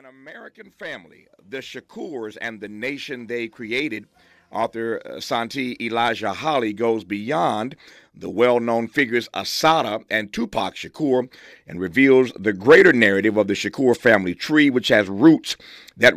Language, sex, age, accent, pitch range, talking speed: English, male, 50-69, American, 110-140 Hz, 135 wpm